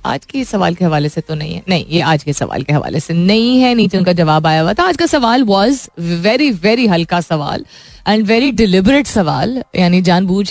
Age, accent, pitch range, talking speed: 20-39, native, 165-225 Hz, 195 wpm